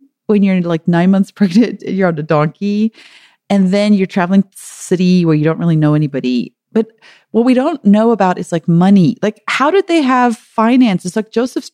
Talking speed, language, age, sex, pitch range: 210 wpm, English, 30-49, female, 165-215 Hz